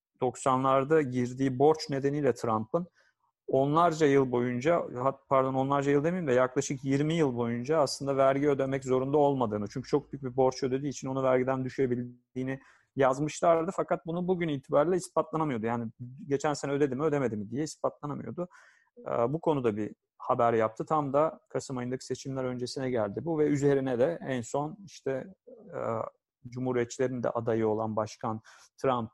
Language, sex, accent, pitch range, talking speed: Turkish, male, native, 120-145 Hz, 150 wpm